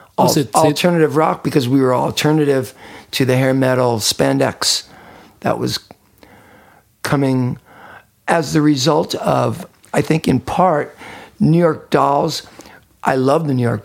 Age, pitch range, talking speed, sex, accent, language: 50-69, 110-150 Hz, 130 wpm, male, American, English